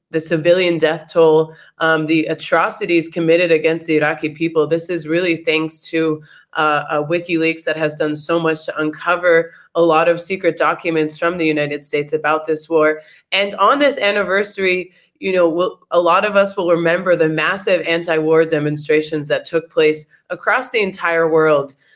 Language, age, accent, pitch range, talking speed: English, 20-39, American, 160-185 Hz, 170 wpm